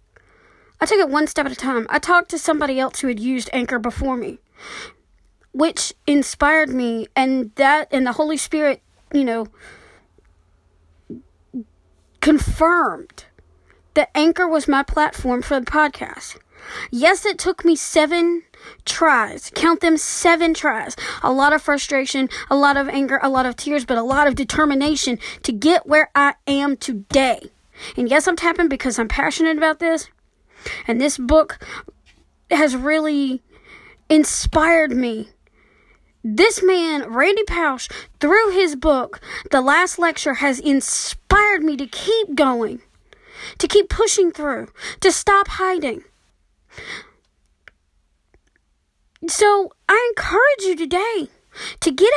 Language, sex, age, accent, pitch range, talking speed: English, female, 30-49, American, 270-340 Hz, 135 wpm